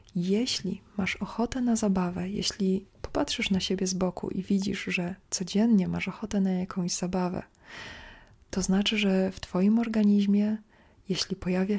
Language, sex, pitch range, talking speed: Polish, female, 180-200 Hz, 145 wpm